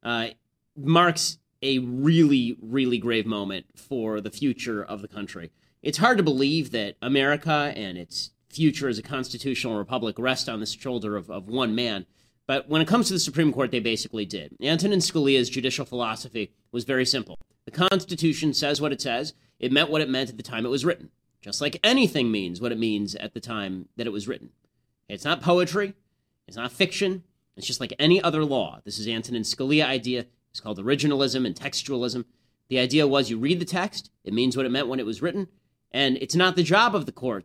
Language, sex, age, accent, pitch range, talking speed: English, male, 30-49, American, 115-150 Hz, 205 wpm